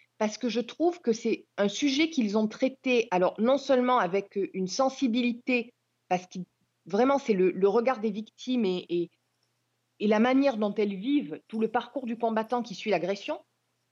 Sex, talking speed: female, 175 wpm